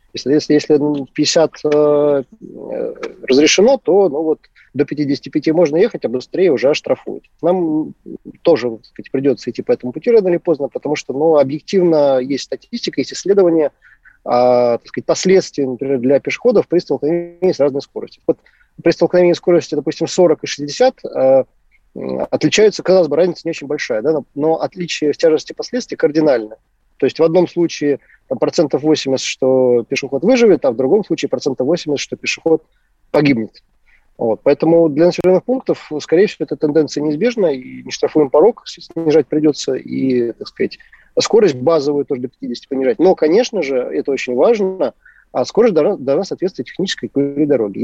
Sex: male